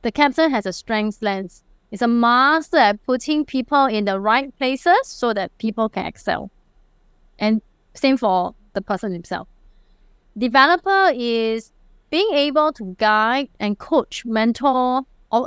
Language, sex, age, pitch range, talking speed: English, female, 20-39, 200-260 Hz, 145 wpm